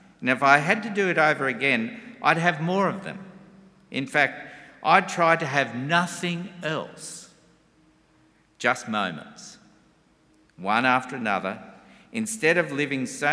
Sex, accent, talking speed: male, Australian, 140 wpm